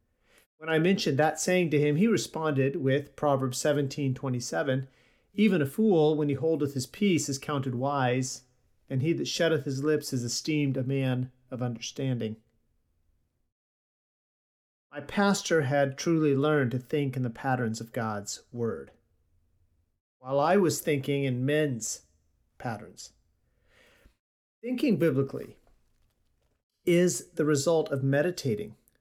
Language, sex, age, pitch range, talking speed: English, male, 40-59, 125-175 Hz, 130 wpm